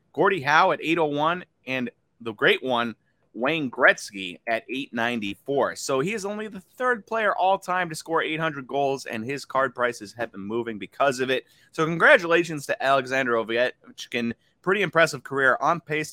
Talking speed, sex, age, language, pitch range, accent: 165 wpm, male, 30-49, English, 120-160 Hz, American